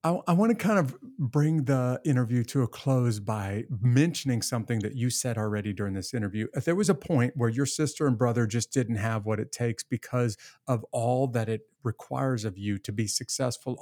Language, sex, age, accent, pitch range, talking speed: English, male, 50-69, American, 115-145 Hz, 210 wpm